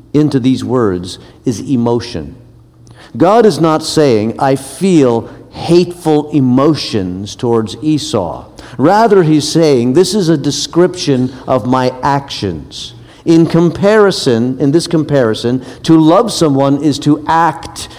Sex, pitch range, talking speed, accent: male, 125-155 Hz, 120 wpm, American